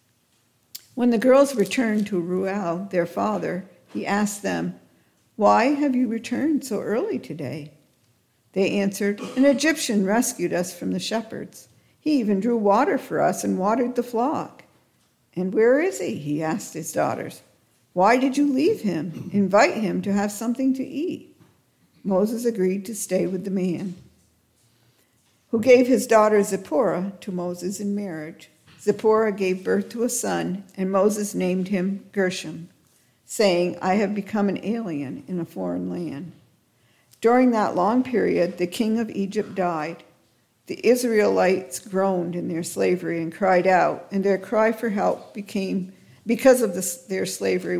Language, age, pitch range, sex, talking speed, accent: English, 60-79, 175-220 Hz, female, 155 wpm, American